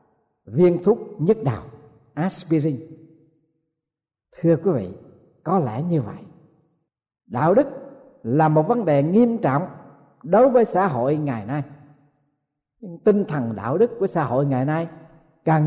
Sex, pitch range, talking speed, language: male, 135-185 Hz, 140 wpm, Vietnamese